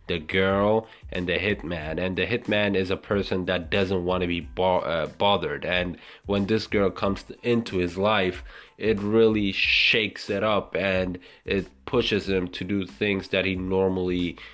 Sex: male